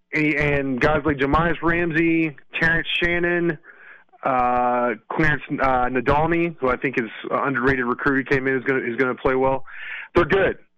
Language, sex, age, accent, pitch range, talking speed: English, male, 30-49, American, 125-165 Hz, 160 wpm